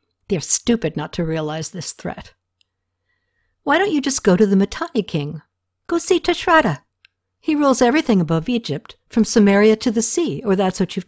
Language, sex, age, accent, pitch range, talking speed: English, female, 60-79, American, 155-230 Hz, 185 wpm